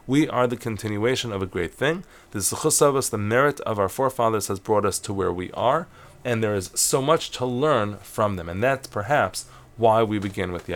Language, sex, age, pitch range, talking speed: English, male, 30-49, 100-125 Hz, 230 wpm